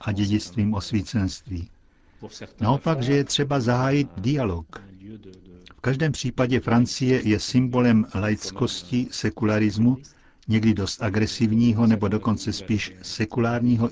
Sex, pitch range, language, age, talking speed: male, 100-125 Hz, Czech, 60-79, 105 wpm